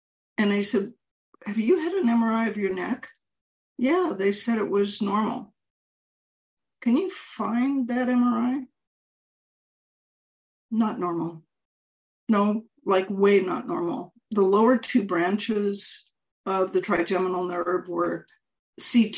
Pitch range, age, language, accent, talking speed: 175-225 Hz, 50-69, English, American, 120 wpm